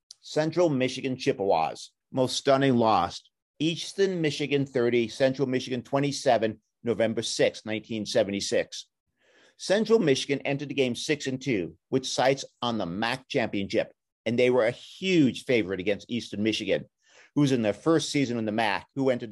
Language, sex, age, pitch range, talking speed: English, male, 50-69, 115-150 Hz, 150 wpm